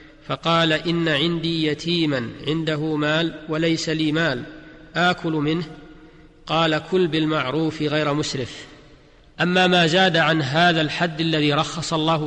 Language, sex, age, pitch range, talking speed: Arabic, male, 40-59, 150-165 Hz, 120 wpm